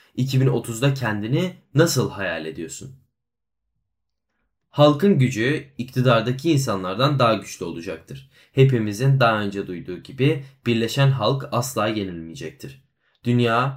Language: Turkish